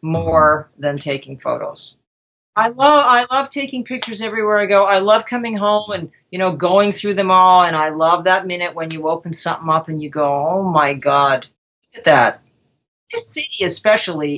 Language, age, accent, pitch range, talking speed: English, 50-69, American, 160-215 Hz, 190 wpm